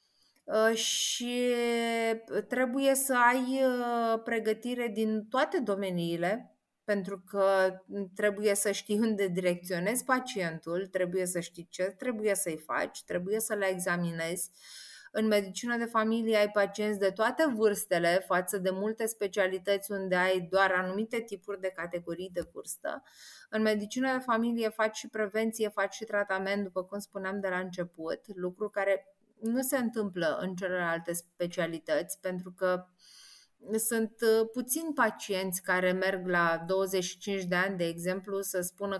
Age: 30-49